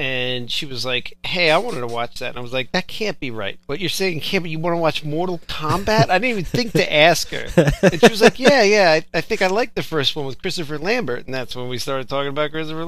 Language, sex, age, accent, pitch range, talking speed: English, male, 40-59, American, 125-170 Hz, 285 wpm